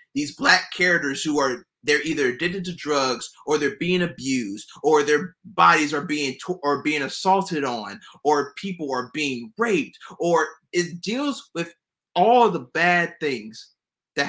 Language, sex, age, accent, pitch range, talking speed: English, male, 30-49, American, 140-195 Hz, 145 wpm